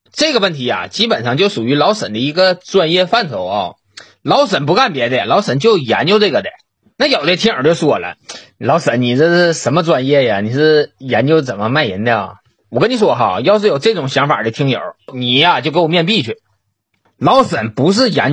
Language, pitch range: Chinese, 125-210 Hz